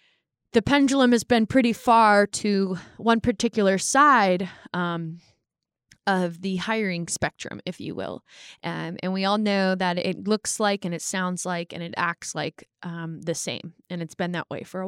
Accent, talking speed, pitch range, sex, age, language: American, 180 wpm, 170-210 Hz, female, 20-39, English